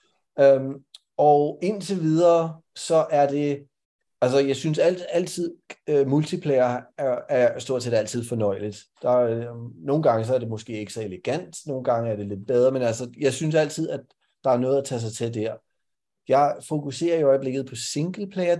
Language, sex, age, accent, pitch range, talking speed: Danish, male, 30-49, native, 120-150 Hz, 175 wpm